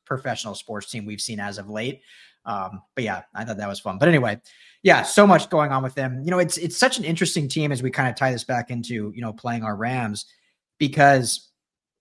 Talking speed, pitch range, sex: 235 wpm, 110-145 Hz, male